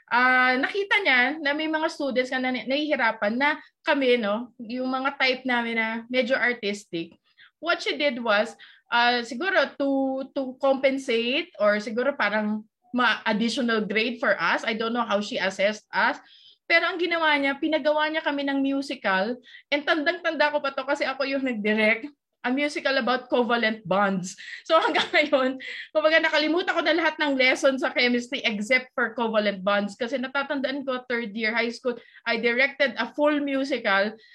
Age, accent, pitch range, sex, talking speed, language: 20-39, native, 230-300 Hz, female, 165 wpm, Filipino